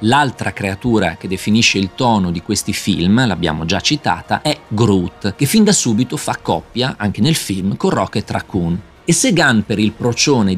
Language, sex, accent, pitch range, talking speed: Italian, male, native, 105-145 Hz, 180 wpm